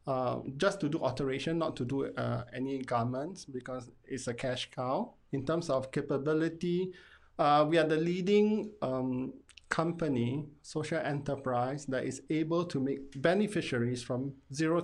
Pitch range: 130-165 Hz